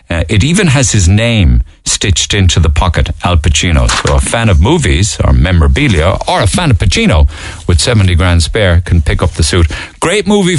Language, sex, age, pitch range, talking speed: English, male, 50-69, 85-110 Hz, 200 wpm